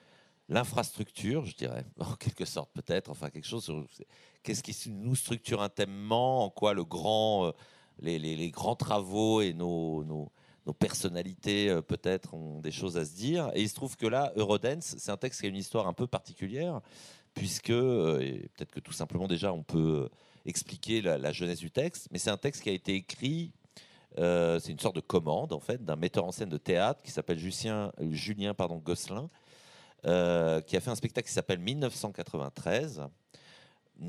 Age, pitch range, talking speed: 40-59, 85-115 Hz, 185 wpm